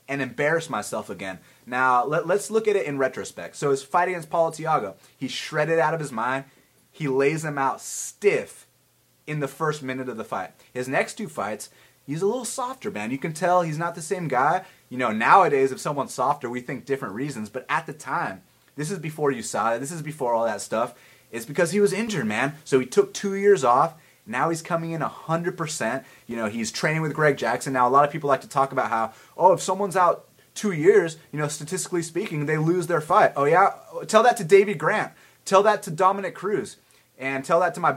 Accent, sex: American, male